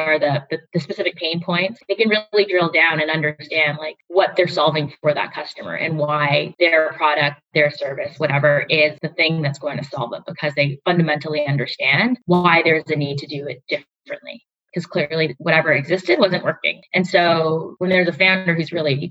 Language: English